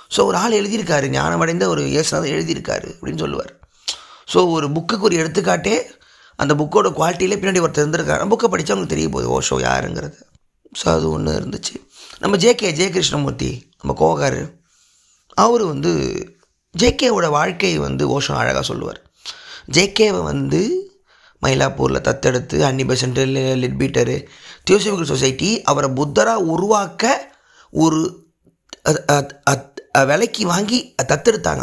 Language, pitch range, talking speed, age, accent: Tamil, 140-200 Hz, 120 wpm, 20-39, native